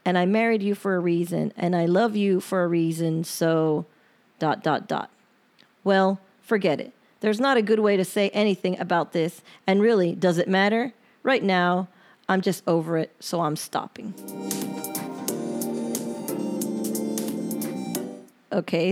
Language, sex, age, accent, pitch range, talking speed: English, female, 30-49, American, 175-215 Hz, 145 wpm